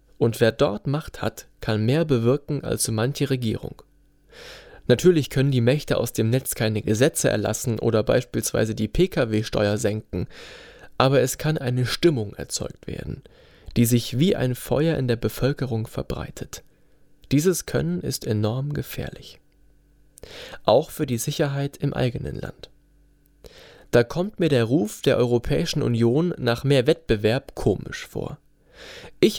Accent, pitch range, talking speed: German, 115-150 Hz, 140 wpm